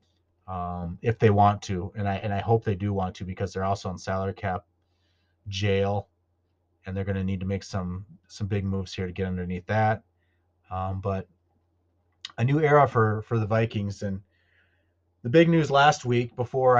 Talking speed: 190 wpm